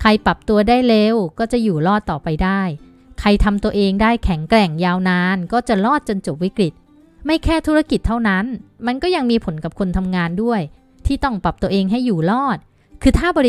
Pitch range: 180-235 Hz